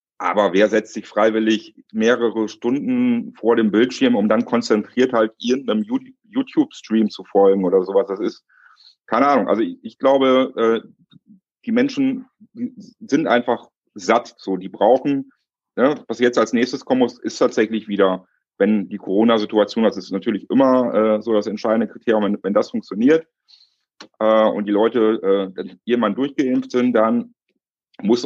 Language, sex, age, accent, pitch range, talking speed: German, male, 40-59, German, 105-160 Hz, 140 wpm